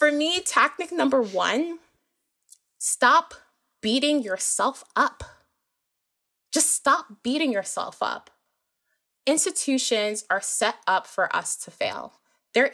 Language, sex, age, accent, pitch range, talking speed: English, female, 20-39, American, 190-275 Hz, 110 wpm